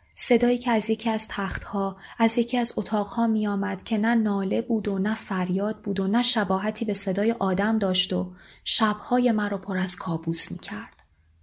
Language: Persian